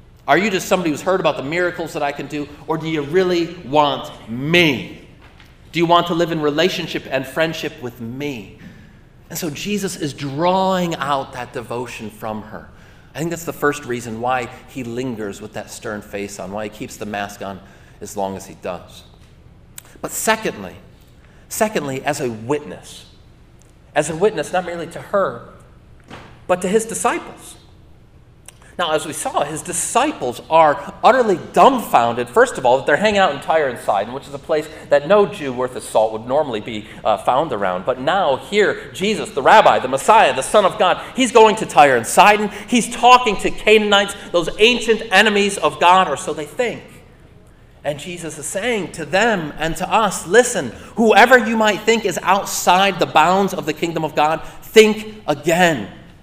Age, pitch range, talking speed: 40-59, 135-190 Hz, 185 wpm